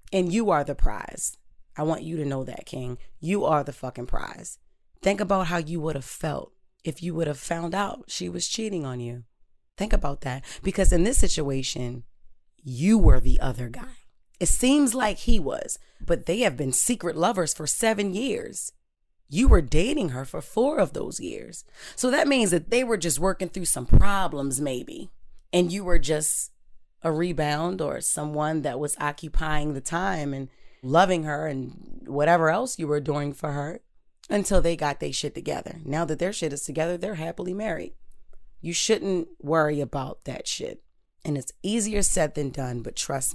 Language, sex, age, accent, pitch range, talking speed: English, female, 30-49, American, 140-180 Hz, 185 wpm